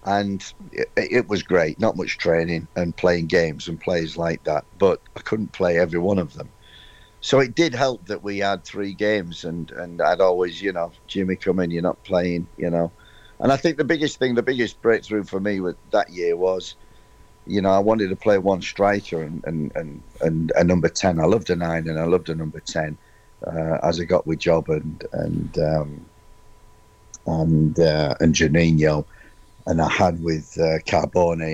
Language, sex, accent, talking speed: English, male, British, 200 wpm